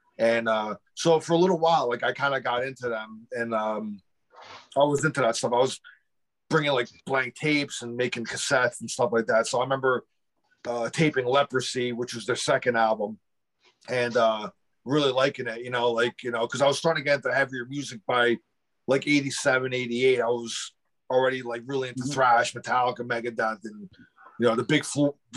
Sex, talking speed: male, 195 wpm